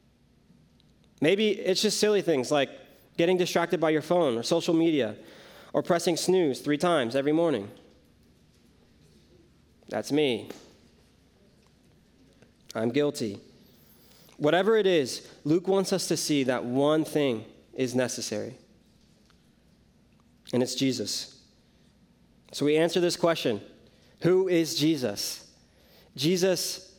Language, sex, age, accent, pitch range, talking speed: English, male, 20-39, American, 125-170 Hz, 110 wpm